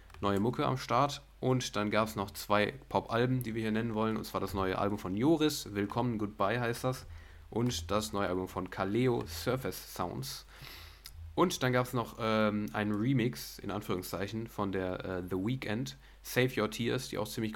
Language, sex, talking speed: German, male, 190 wpm